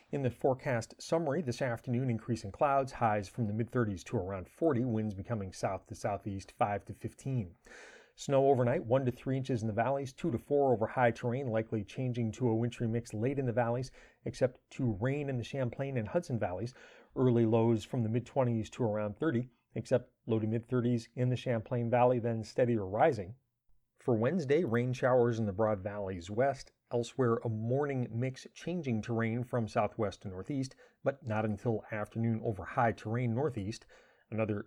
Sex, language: male, English